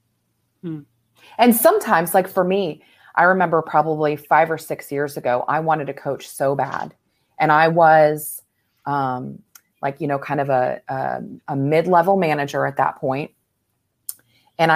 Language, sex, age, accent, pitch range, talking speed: English, female, 30-49, American, 135-165 Hz, 150 wpm